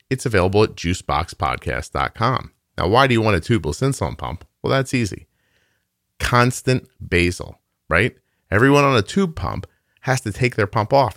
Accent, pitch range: American, 85-120 Hz